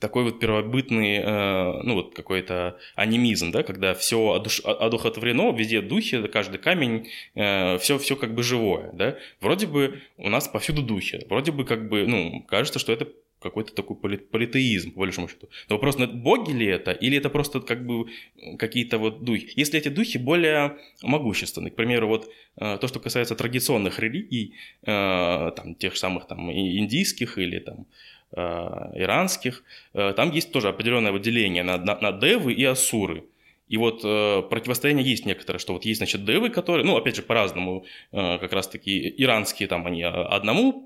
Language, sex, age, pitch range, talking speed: Russian, male, 20-39, 100-140 Hz, 155 wpm